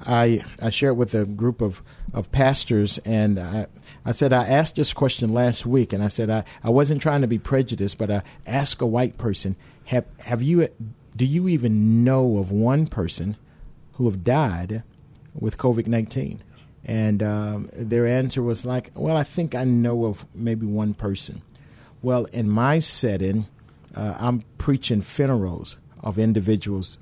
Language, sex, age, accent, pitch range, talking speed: English, male, 50-69, American, 105-130 Hz, 165 wpm